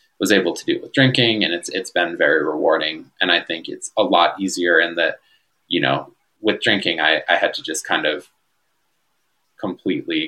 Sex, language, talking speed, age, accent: male, English, 200 wpm, 20-39, American